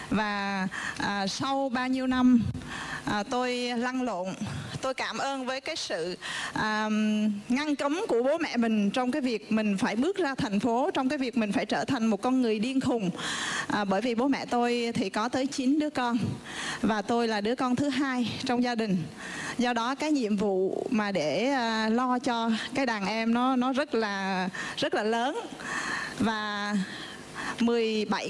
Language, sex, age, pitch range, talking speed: Vietnamese, female, 20-39, 215-265 Hz, 185 wpm